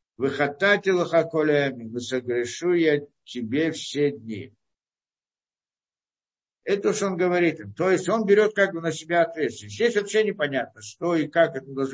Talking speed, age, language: 165 wpm, 60-79, Russian